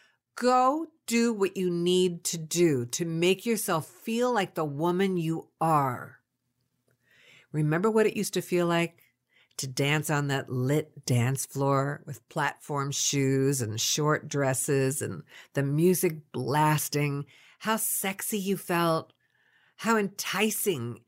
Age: 50-69